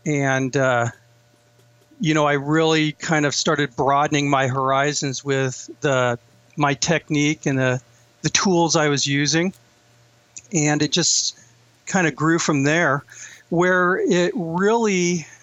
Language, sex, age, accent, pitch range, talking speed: English, male, 50-69, American, 135-170 Hz, 130 wpm